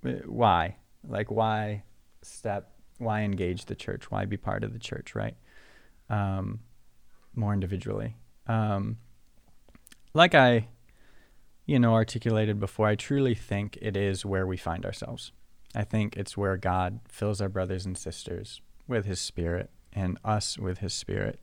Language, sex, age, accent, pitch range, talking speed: English, male, 20-39, American, 95-115 Hz, 145 wpm